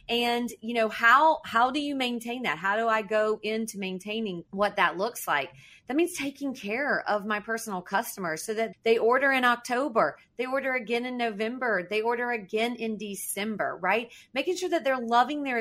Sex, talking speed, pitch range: female, 190 wpm, 195-235 Hz